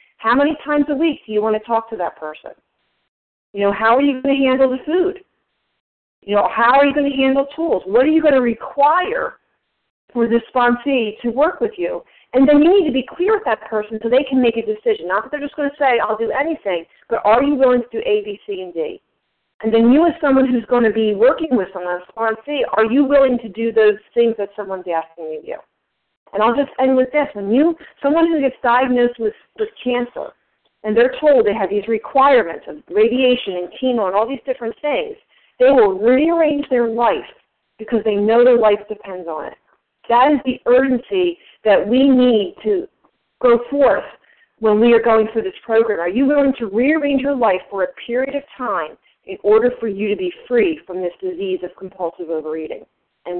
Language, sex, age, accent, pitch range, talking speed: English, female, 40-59, American, 215-285 Hz, 220 wpm